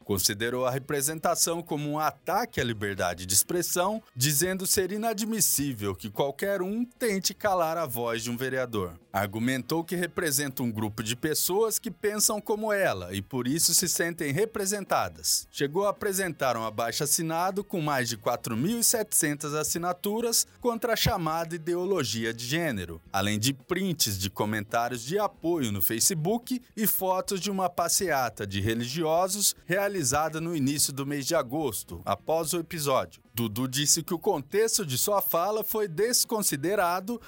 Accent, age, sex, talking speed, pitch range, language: Brazilian, 20-39, male, 150 wpm, 120-195 Hz, Portuguese